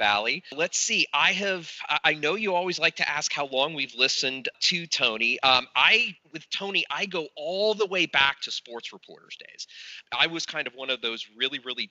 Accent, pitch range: American, 110-160 Hz